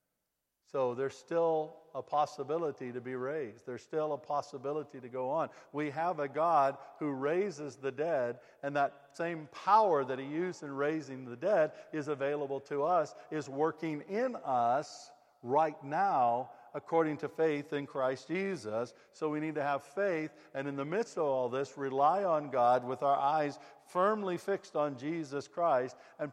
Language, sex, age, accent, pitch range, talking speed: English, male, 60-79, American, 140-175 Hz, 170 wpm